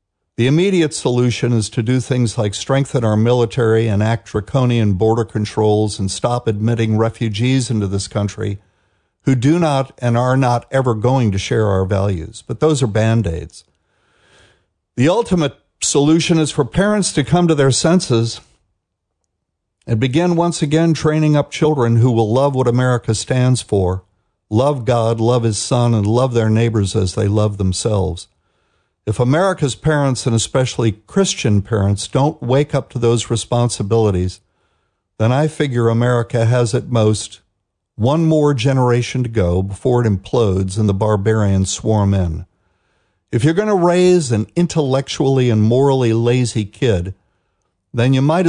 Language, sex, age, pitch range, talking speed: English, male, 60-79, 105-135 Hz, 155 wpm